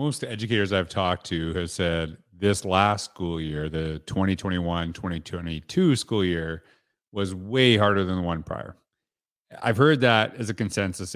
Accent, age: American, 40-59